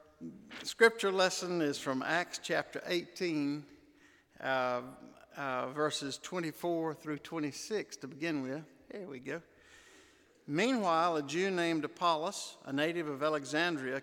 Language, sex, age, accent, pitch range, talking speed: English, male, 60-79, American, 140-185 Hz, 120 wpm